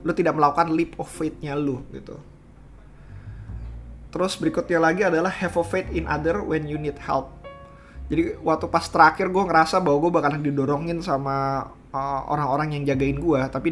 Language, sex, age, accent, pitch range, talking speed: Indonesian, male, 20-39, native, 135-160 Hz, 165 wpm